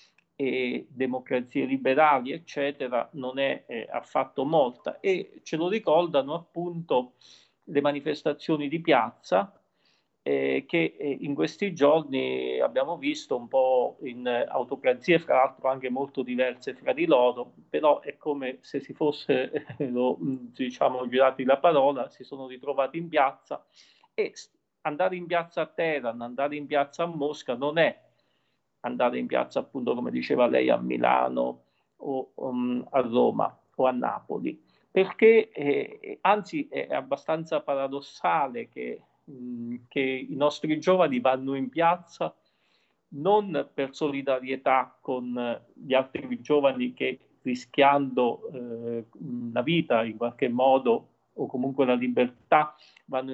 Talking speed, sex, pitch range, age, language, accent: 135 wpm, male, 125-165 Hz, 40-59, Italian, native